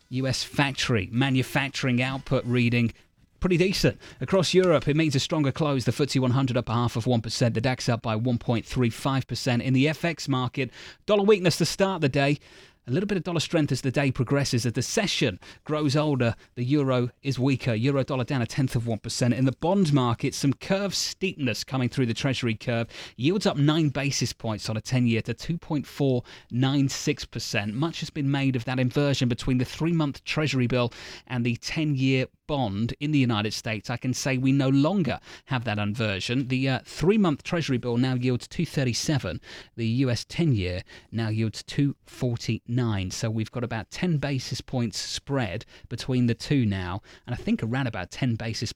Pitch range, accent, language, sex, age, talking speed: 115-140 Hz, British, English, male, 30-49, 185 wpm